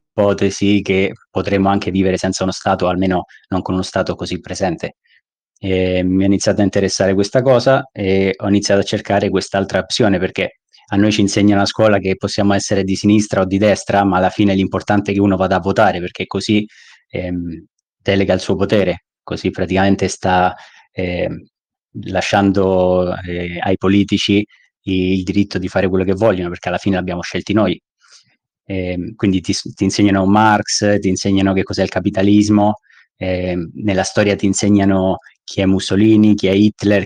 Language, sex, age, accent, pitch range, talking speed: Italian, male, 20-39, native, 95-100 Hz, 170 wpm